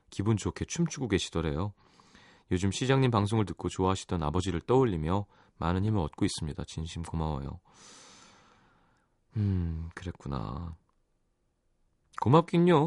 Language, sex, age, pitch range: Korean, male, 30-49, 90-130 Hz